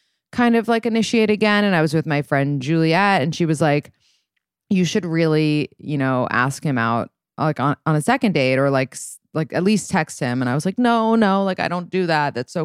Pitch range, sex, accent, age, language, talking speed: 145-175 Hz, female, American, 20-39, English, 235 wpm